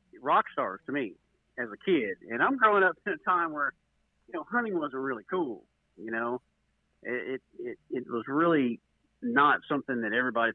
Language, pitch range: English, 115-165 Hz